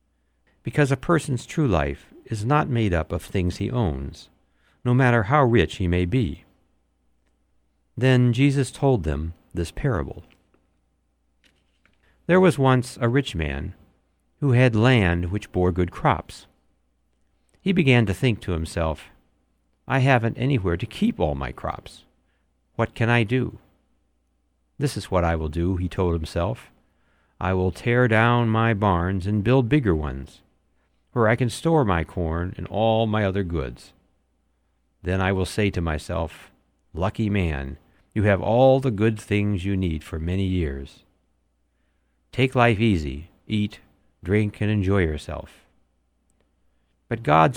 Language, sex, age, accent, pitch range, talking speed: English, male, 60-79, American, 75-115 Hz, 145 wpm